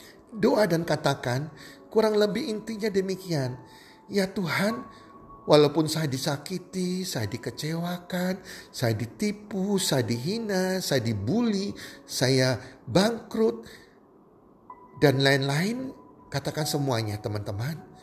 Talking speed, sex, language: 90 wpm, male, Indonesian